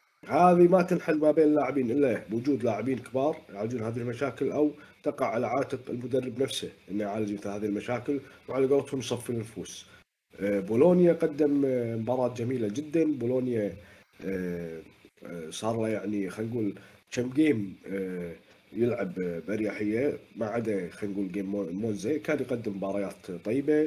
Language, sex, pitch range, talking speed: Arabic, male, 100-135 Hz, 135 wpm